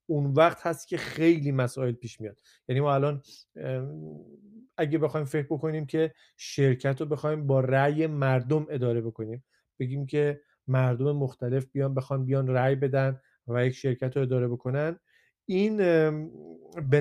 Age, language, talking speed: 40-59, Persian, 145 wpm